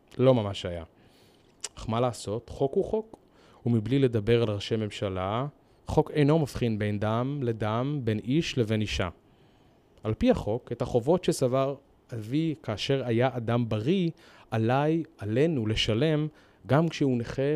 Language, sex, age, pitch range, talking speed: Hebrew, male, 30-49, 110-145 Hz, 140 wpm